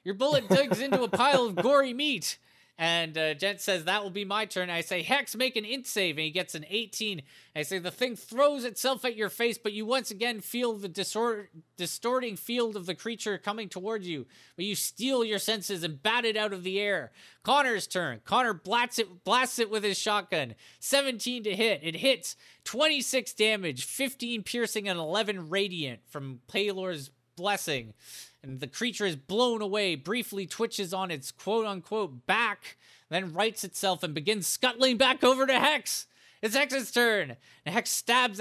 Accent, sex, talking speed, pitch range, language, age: American, male, 190 wpm, 160-230 Hz, English, 20-39